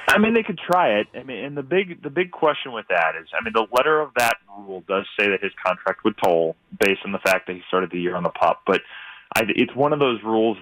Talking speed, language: 285 wpm, English